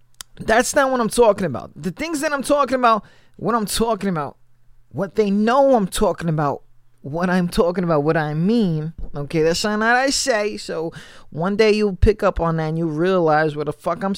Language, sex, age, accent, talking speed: English, male, 20-39, American, 210 wpm